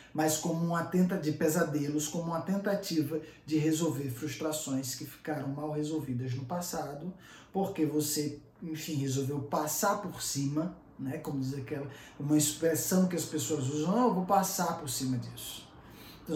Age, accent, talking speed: 20-39, Brazilian, 155 wpm